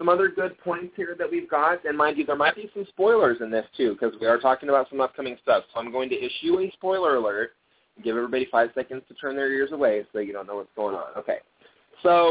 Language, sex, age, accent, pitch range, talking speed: English, male, 20-39, American, 115-170 Hz, 260 wpm